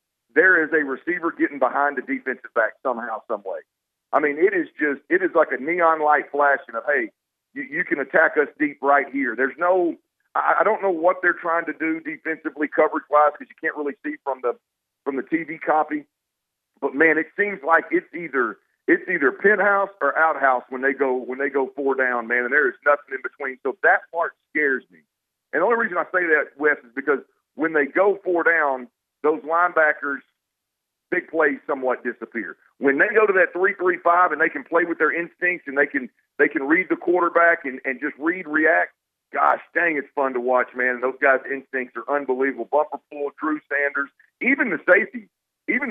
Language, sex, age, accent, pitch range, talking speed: English, male, 50-69, American, 140-180 Hz, 205 wpm